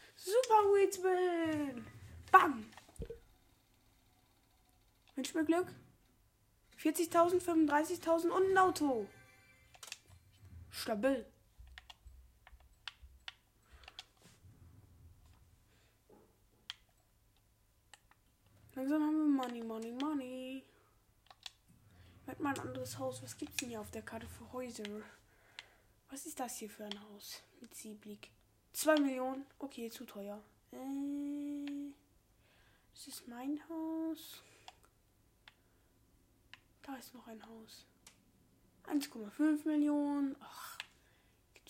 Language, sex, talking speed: German, female, 90 wpm